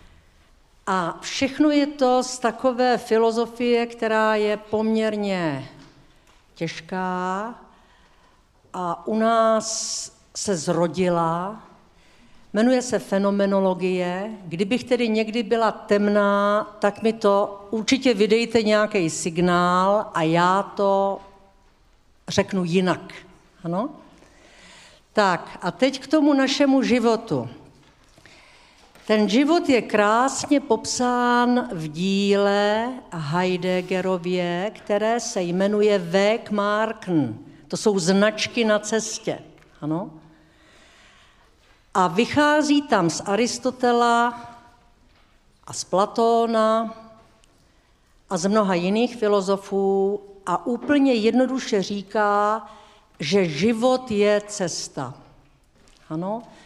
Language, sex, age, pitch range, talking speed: Czech, female, 60-79, 180-230 Hz, 90 wpm